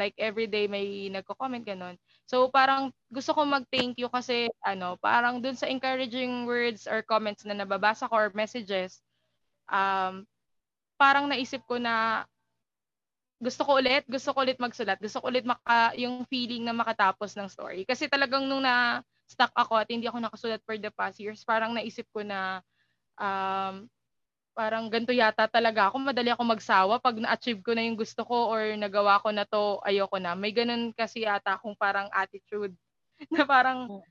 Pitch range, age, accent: 205-255 Hz, 20-39, native